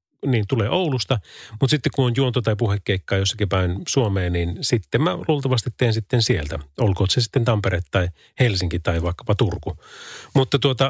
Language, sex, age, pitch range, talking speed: Finnish, male, 30-49, 100-135 Hz, 170 wpm